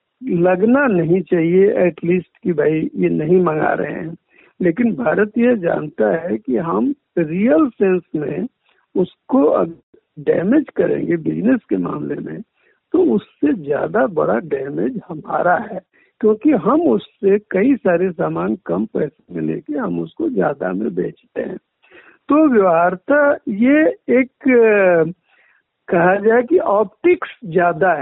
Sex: male